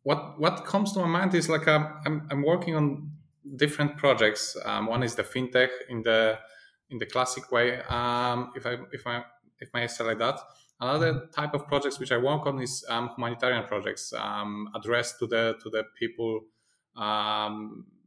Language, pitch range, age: English, 120-150 Hz, 20-39